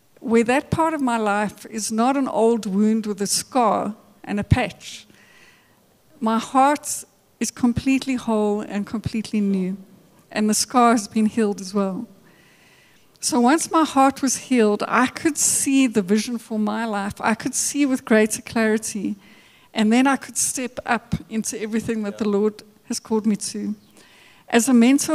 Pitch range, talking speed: 210-245 Hz, 170 wpm